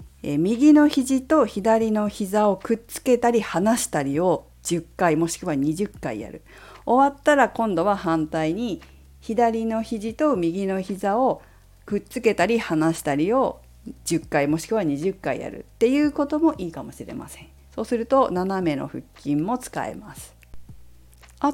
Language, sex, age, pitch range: Japanese, female, 50-69, 150-245 Hz